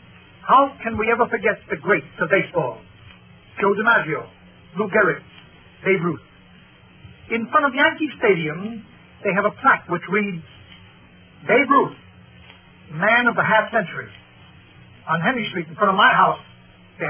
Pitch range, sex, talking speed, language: 175-235 Hz, male, 145 wpm, English